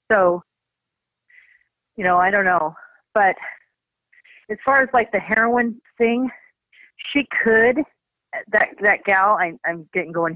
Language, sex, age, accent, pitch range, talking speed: English, female, 30-49, American, 165-210 Hz, 125 wpm